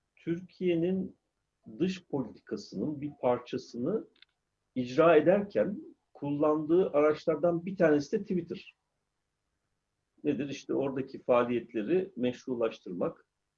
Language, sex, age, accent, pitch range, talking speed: Turkish, male, 50-69, native, 110-165 Hz, 80 wpm